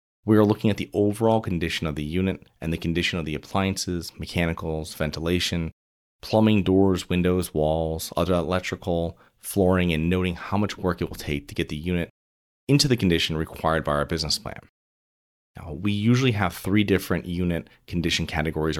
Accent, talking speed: American, 170 wpm